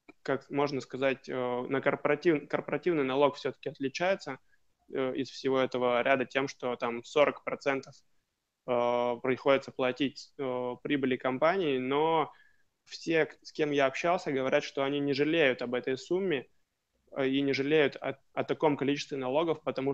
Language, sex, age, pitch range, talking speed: Russian, male, 20-39, 130-140 Hz, 130 wpm